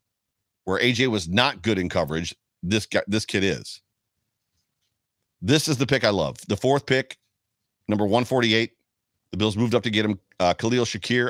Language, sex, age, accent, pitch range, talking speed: English, male, 40-59, American, 100-125 Hz, 175 wpm